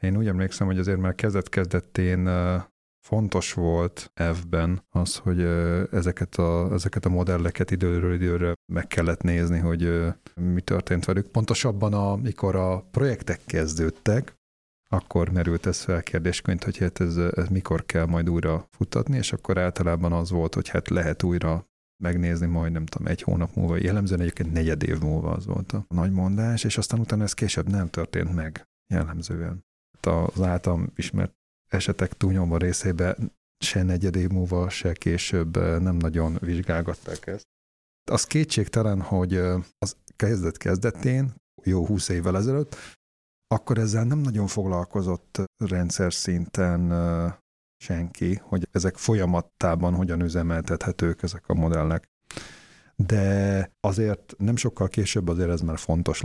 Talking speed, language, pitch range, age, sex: 140 wpm, Hungarian, 85-95 Hz, 30-49, male